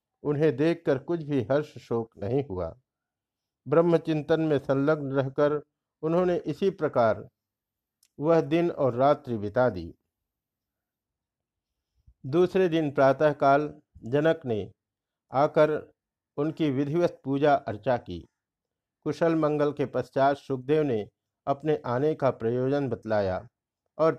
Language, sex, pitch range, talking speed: Hindi, male, 115-155 Hz, 110 wpm